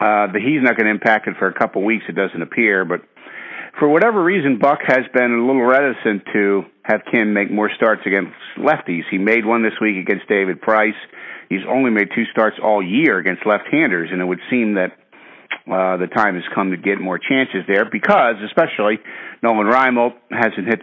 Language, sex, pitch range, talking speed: English, male, 95-115 Hz, 205 wpm